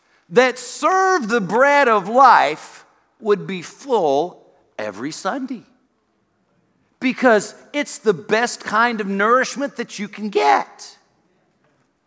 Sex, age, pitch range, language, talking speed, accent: male, 50-69, 180-245 Hz, English, 110 wpm, American